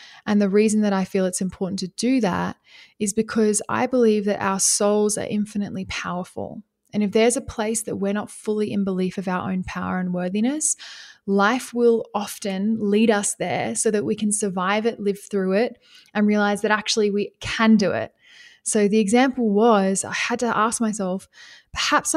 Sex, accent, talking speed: female, Australian, 190 wpm